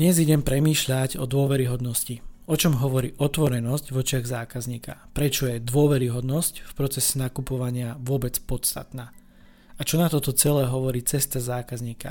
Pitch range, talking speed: 125-140 Hz, 140 wpm